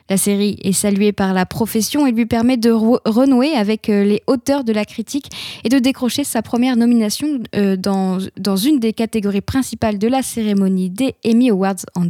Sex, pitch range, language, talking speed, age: female, 210-255 Hz, French, 180 wpm, 10-29